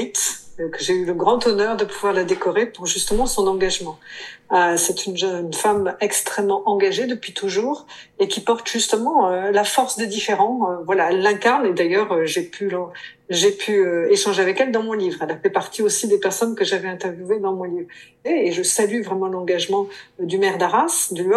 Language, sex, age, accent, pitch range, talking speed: French, female, 50-69, French, 185-240 Hz, 210 wpm